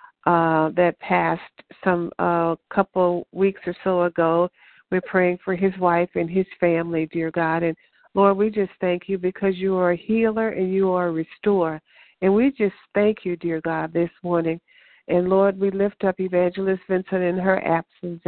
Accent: American